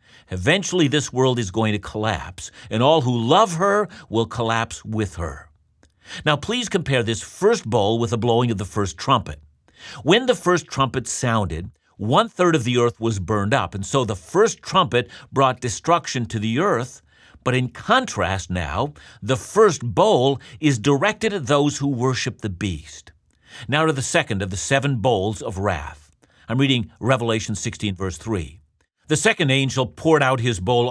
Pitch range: 105-140 Hz